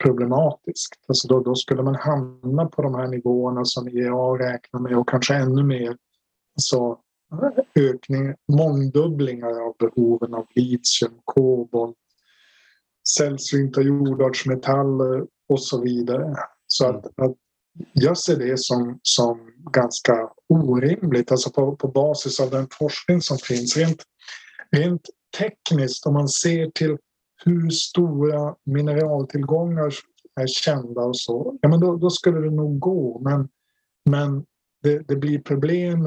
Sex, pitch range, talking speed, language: male, 125-150 Hz, 135 wpm, Swedish